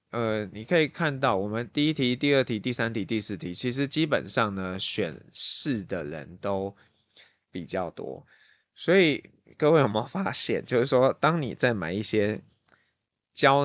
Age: 20-39